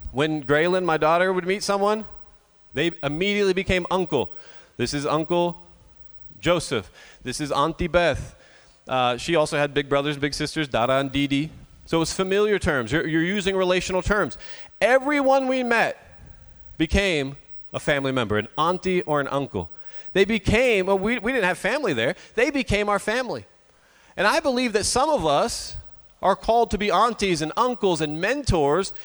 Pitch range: 145-210 Hz